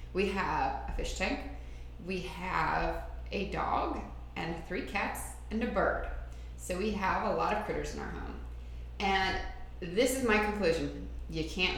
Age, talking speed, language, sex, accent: 30-49, 165 wpm, English, female, American